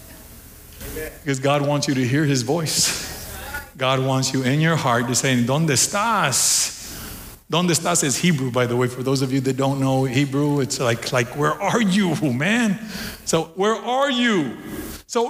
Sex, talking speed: male, 175 wpm